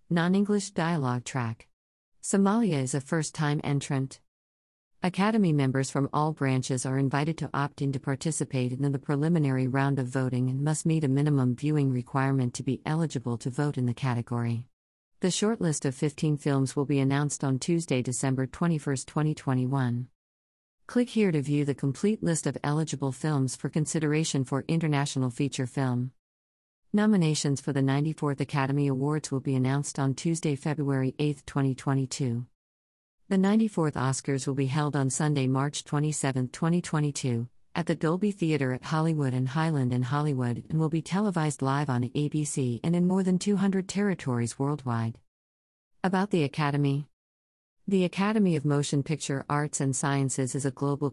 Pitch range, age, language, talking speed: 130-155 Hz, 50-69, English, 155 wpm